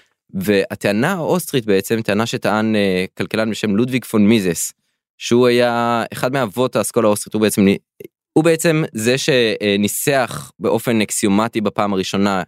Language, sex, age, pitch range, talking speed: Hebrew, male, 20-39, 100-130 Hz, 130 wpm